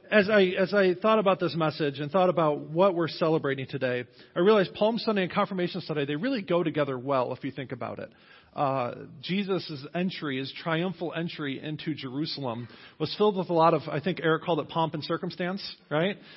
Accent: American